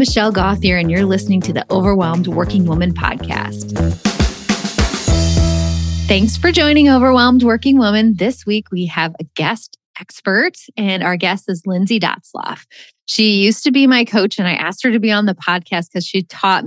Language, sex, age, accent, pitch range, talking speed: English, female, 20-39, American, 180-230 Hz, 175 wpm